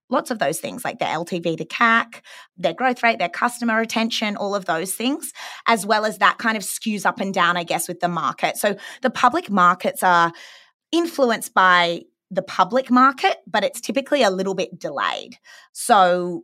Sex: female